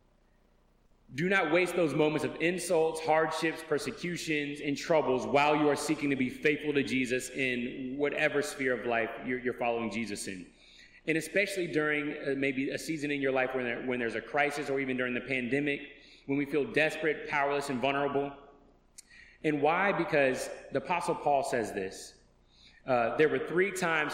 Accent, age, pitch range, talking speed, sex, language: American, 30-49, 120-150 Hz, 165 wpm, male, English